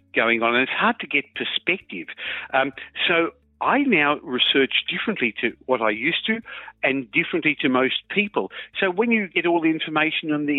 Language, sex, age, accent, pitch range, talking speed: English, male, 50-69, British, 120-175 Hz, 185 wpm